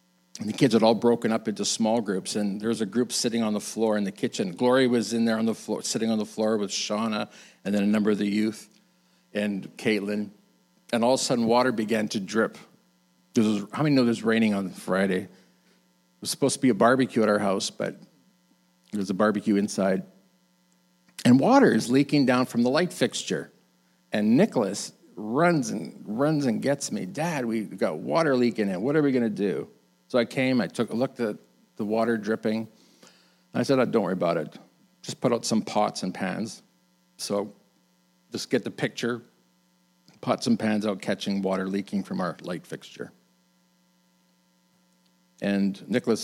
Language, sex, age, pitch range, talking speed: English, male, 50-69, 85-120 Hz, 195 wpm